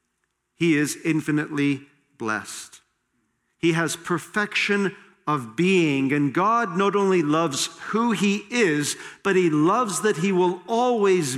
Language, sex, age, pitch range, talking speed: English, male, 50-69, 130-165 Hz, 125 wpm